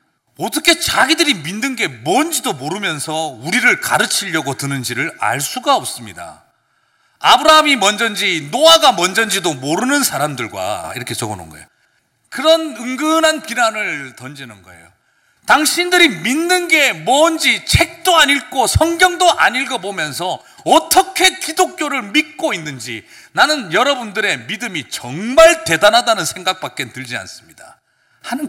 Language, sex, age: Korean, male, 40-59